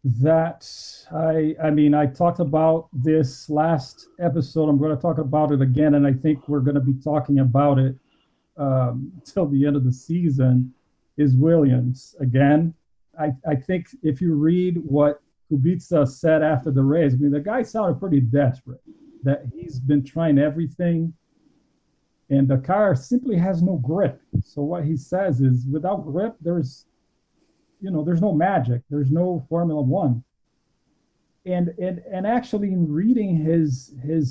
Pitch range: 140-170 Hz